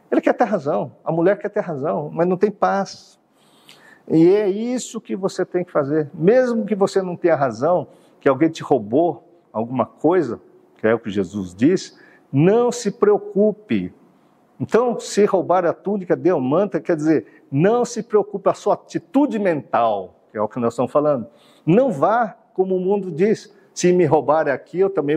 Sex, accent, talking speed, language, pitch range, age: male, Brazilian, 185 wpm, Portuguese, 140-200 Hz, 50-69